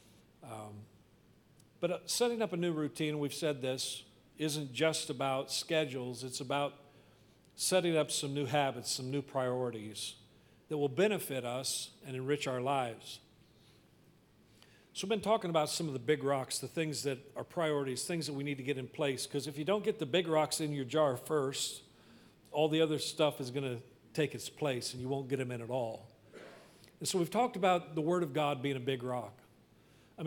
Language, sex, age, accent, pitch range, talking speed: English, male, 50-69, American, 125-155 Hz, 195 wpm